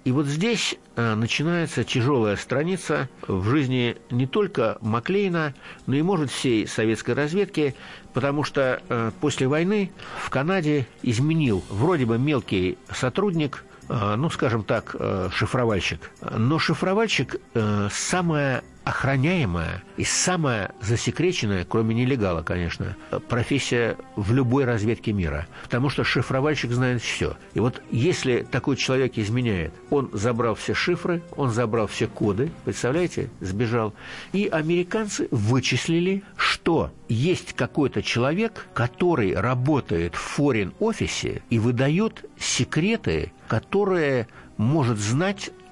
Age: 60-79